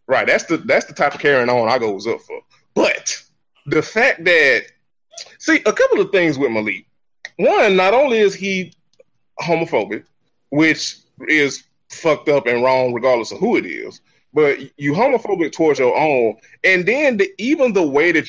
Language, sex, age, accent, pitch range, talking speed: English, male, 20-39, American, 130-190 Hz, 175 wpm